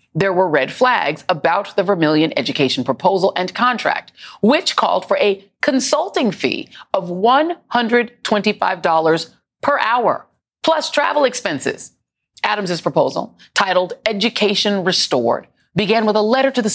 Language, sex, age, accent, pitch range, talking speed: English, female, 30-49, American, 170-235 Hz, 140 wpm